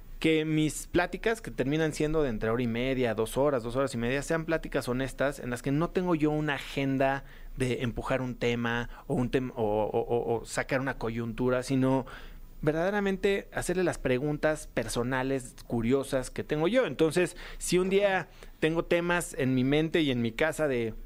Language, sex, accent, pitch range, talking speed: Spanish, male, Mexican, 125-175 Hz, 180 wpm